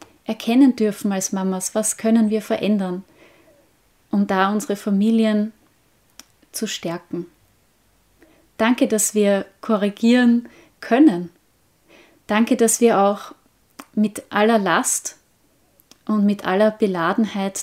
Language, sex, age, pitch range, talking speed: German, female, 30-49, 195-225 Hz, 100 wpm